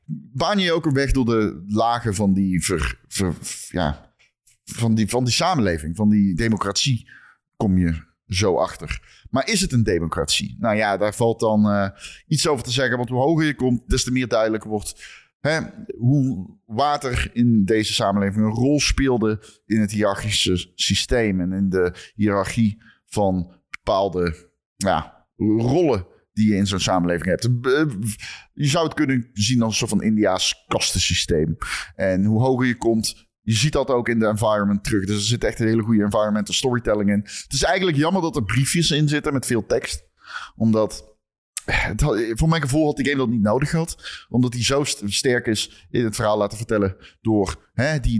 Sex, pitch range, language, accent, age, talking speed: male, 100-125 Hz, Dutch, Dutch, 30-49, 175 wpm